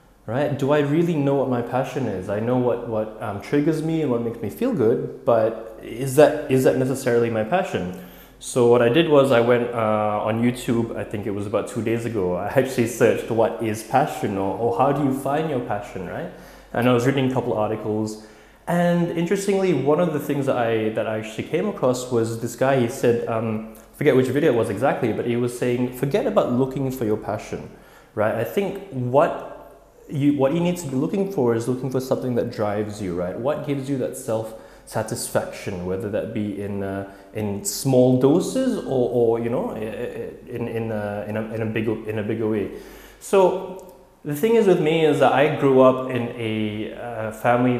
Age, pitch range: 20-39, 110-135 Hz